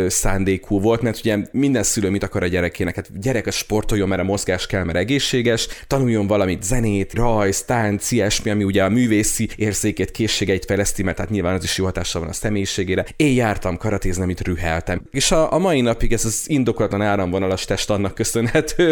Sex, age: male, 30-49